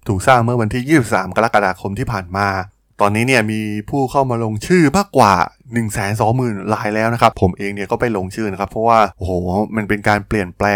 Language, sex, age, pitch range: Thai, male, 20-39, 100-130 Hz